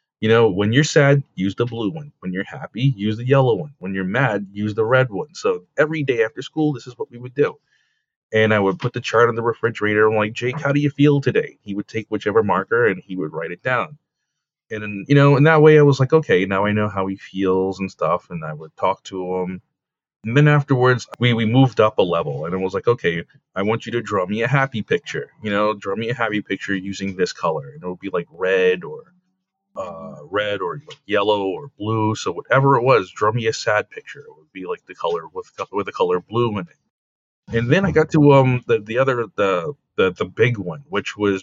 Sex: male